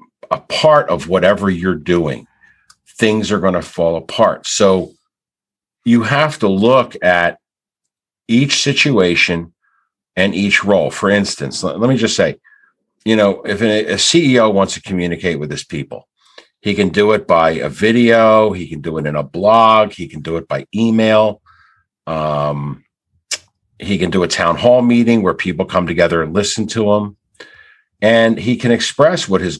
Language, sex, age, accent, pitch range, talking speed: English, male, 50-69, American, 85-110 Hz, 165 wpm